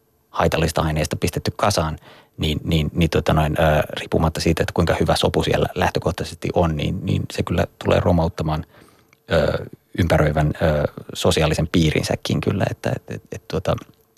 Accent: native